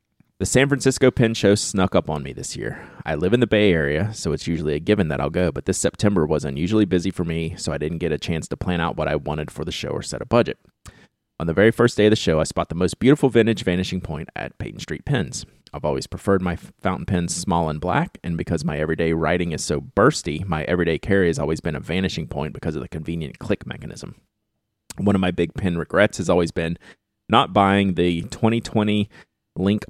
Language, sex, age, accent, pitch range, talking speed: English, male, 30-49, American, 80-100 Hz, 235 wpm